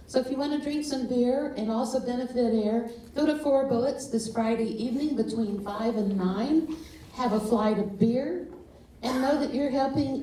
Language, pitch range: English, 205-250 Hz